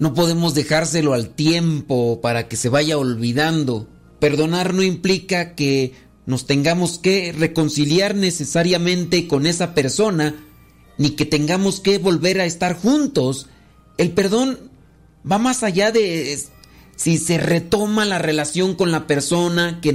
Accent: Mexican